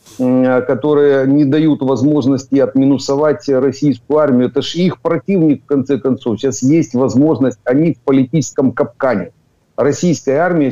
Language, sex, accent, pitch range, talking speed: Ukrainian, male, native, 125-145 Hz, 130 wpm